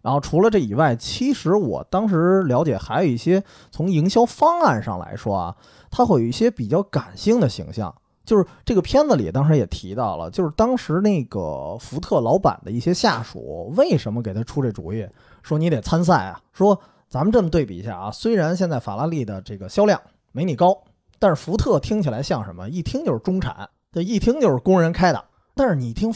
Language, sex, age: Chinese, male, 20-39